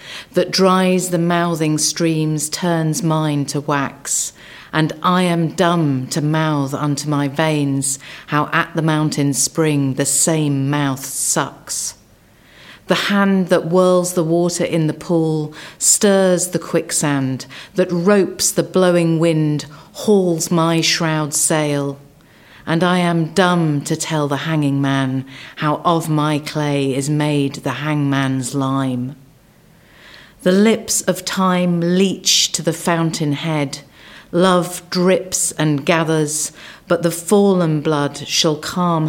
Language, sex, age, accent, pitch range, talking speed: English, female, 40-59, British, 140-170 Hz, 130 wpm